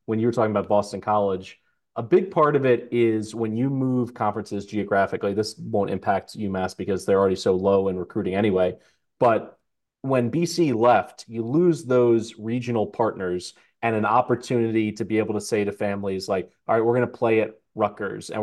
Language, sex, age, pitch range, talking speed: English, male, 30-49, 100-115 Hz, 190 wpm